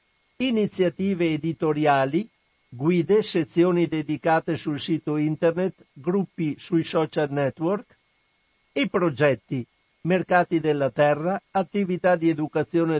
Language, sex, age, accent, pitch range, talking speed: Italian, male, 60-79, native, 145-180 Hz, 90 wpm